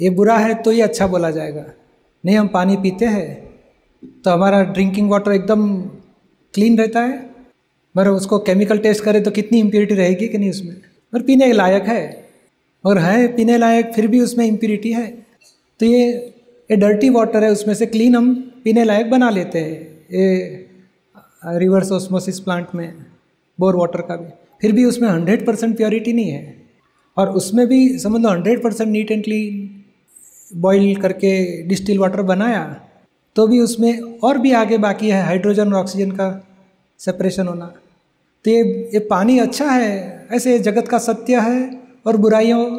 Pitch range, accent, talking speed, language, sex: 190-230 Hz, native, 165 wpm, Hindi, male